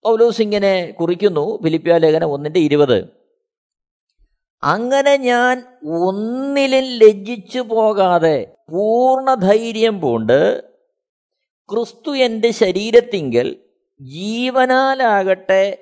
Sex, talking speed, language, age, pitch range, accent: male, 70 wpm, Malayalam, 50-69, 205-265 Hz, native